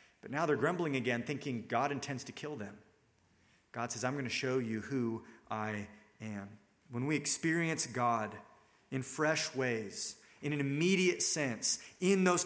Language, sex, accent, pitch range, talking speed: English, male, American, 125-165 Hz, 165 wpm